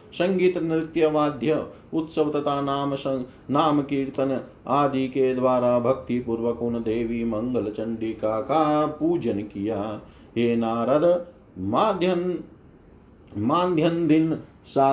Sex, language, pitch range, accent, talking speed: male, Hindi, 130-155 Hz, native, 90 wpm